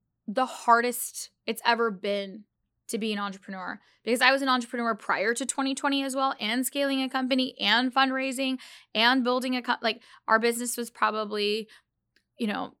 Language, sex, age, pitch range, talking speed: English, female, 10-29, 200-250 Hz, 170 wpm